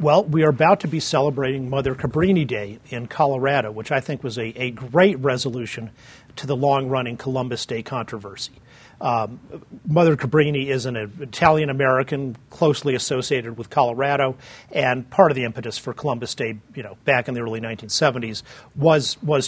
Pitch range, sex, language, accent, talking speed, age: 120-145 Hz, male, English, American, 165 wpm, 40-59